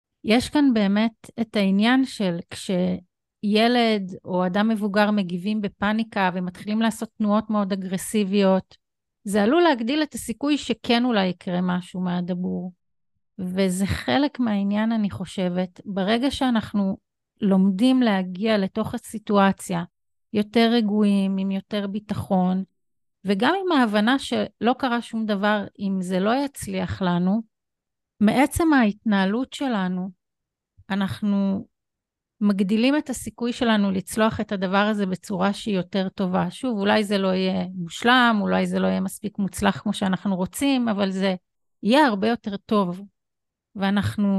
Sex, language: female, Hebrew